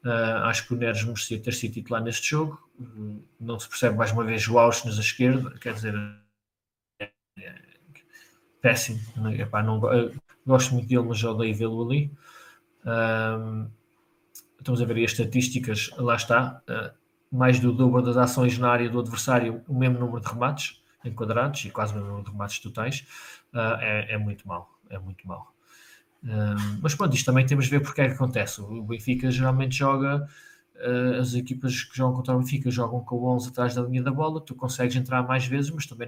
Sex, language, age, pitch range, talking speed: male, Portuguese, 20-39, 110-125 Hz, 190 wpm